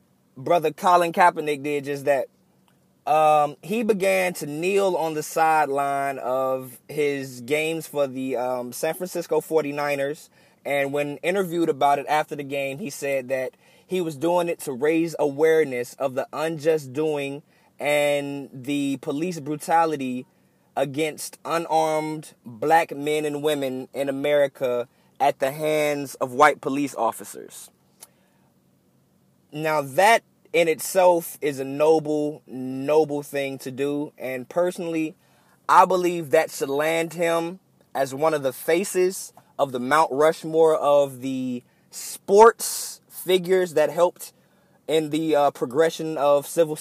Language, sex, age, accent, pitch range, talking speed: English, male, 20-39, American, 140-165 Hz, 135 wpm